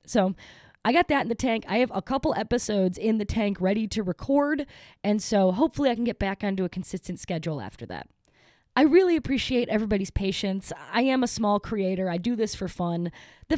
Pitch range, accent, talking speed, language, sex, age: 175-235 Hz, American, 210 wpm, English, female, 20-39